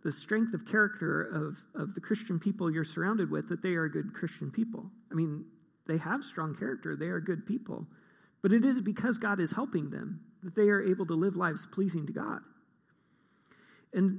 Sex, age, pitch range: male, 40-59, 175-215 Hz